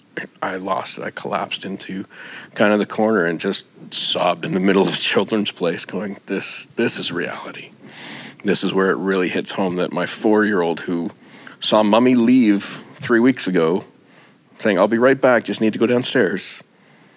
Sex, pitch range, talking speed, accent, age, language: male, 90-105 Hz, 185 wpm, American, 40-59, English